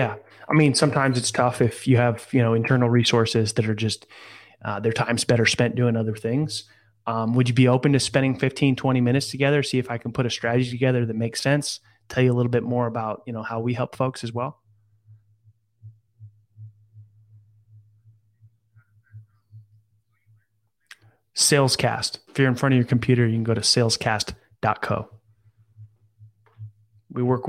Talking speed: 165 wpm